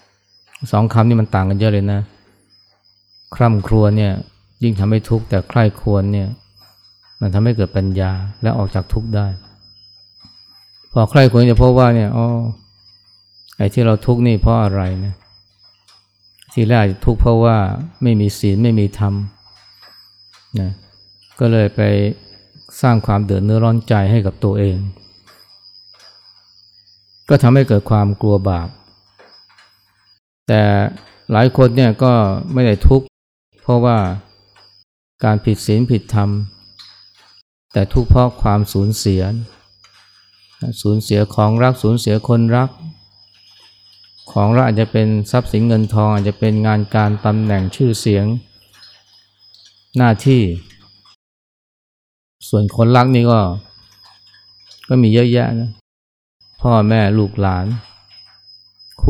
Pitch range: 100-115 Hz